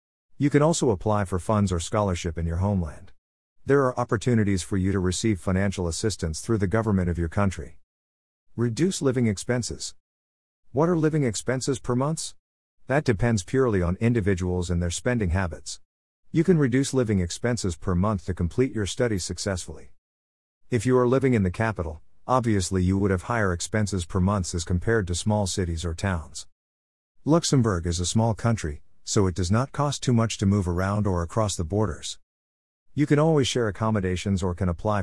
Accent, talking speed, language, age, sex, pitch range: American, 180 wpm, English, 50-69, male, 85-115 Hz